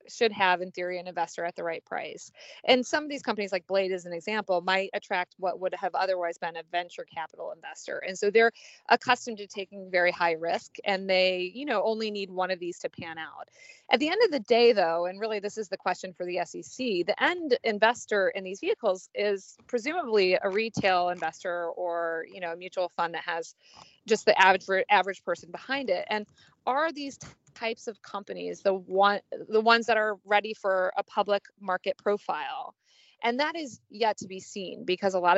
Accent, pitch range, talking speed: American, 180-230 Hz, 210 wpm